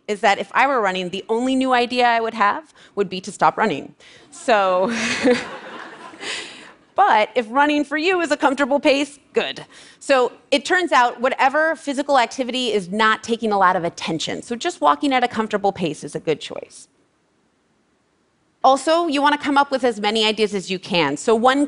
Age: 30-49